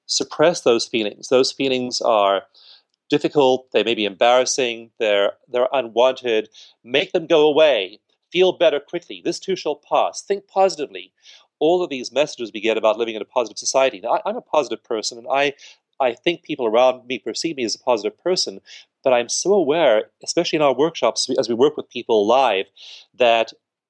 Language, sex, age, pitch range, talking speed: English, male, 40-59, 110-155 Hz, 185 wpm